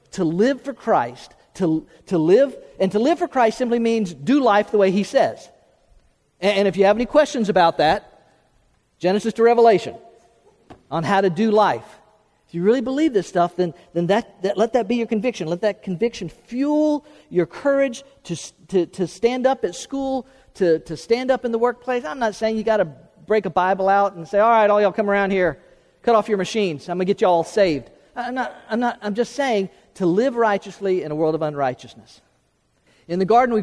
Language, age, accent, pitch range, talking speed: English, 50-69, American, 185-240 Hz, 210 wpm